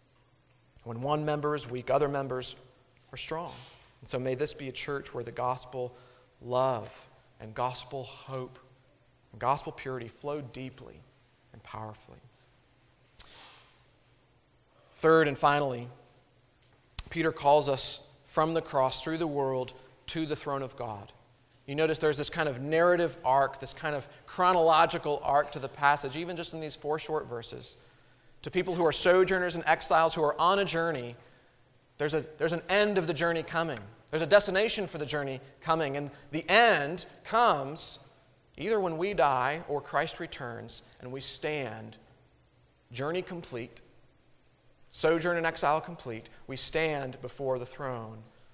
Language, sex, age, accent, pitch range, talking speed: English, male, 40-59, American, 125-155 Hz, 150 wpm